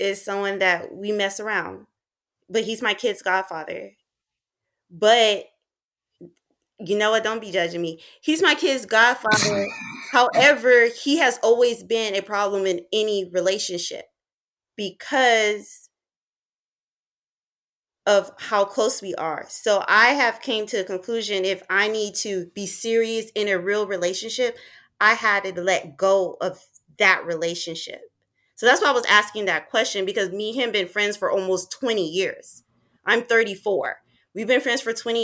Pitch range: 190-230 Hz